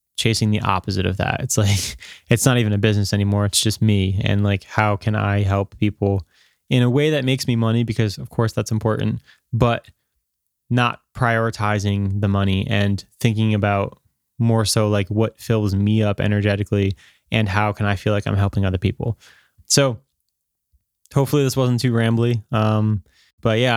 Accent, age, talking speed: American, 20-39, 175 wpm